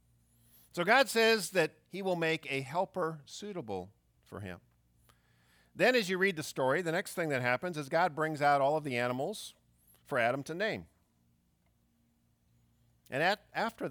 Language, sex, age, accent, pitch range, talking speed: English, male, 50-69, American, 105-170 Hz, 160 wpm